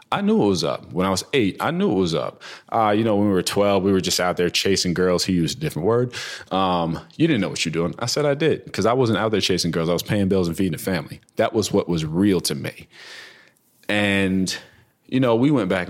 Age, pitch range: 30-49, 90-105 Hz